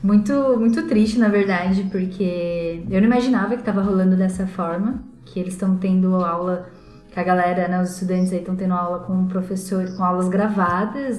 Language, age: Portuguese, 10-29